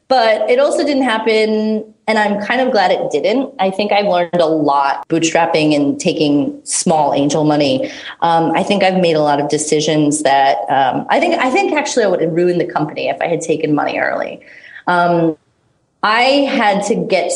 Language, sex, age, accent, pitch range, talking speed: English, female, 30-49, American, 150-200 Hz, 195 wpm